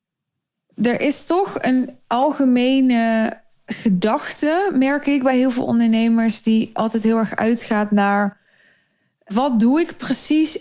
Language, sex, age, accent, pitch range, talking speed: Dutch, female, 20-39, Dutch, 200-245 Hz, 125 wpm